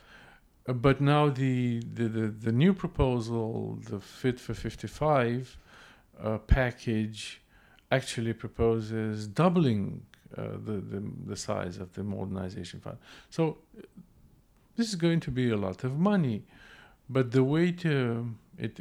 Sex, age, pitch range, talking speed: male, 50-69, 105-140 Hz, 135 wpm